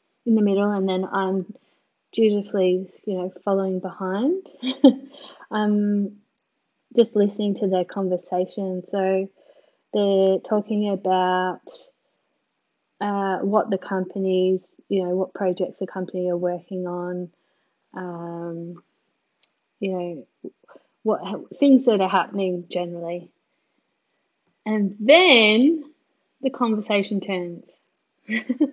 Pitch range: 185-270 Hz